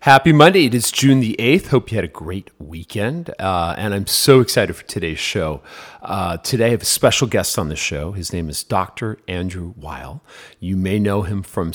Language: English